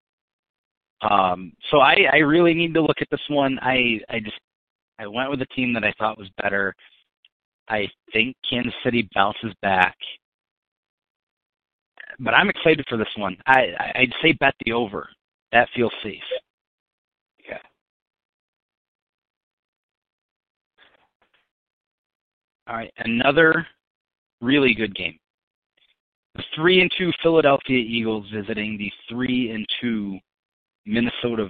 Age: 30-49